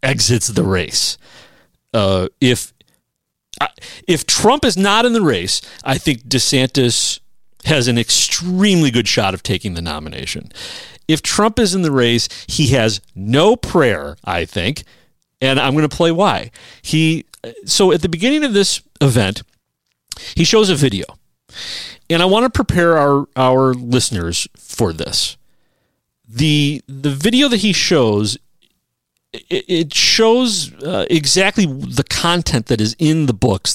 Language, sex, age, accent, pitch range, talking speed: English, male, 40-59, American, 110-165 Hz, 145 wpm